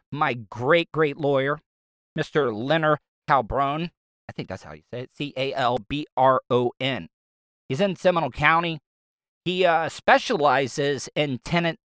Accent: American